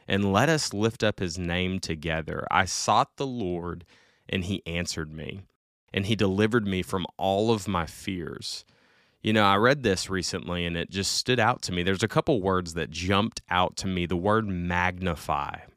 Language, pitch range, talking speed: English, 85-100 Hz, 190 wpm